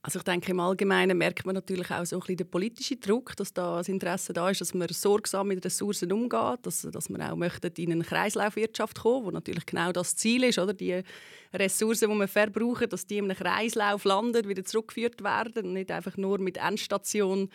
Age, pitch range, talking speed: 30-49, 185-225 Hz, 215 wpm